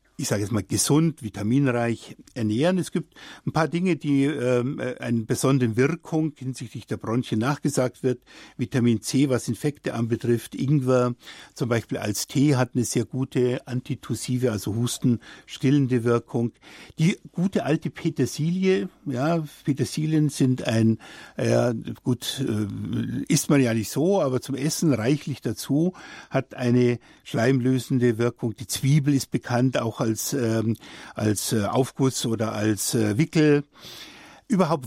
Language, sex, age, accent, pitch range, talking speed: German, male, 60-79, German, 120-150 Hz, 135 wpm